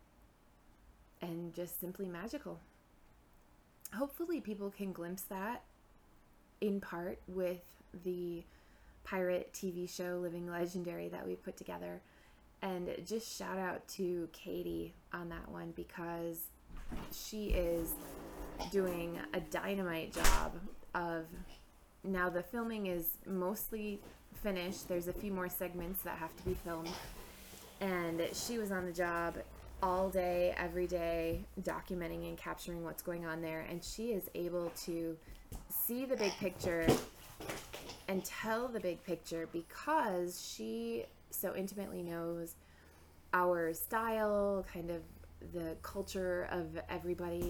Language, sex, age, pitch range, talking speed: English, female, 20-39, 165-185 Hz, 125 wpm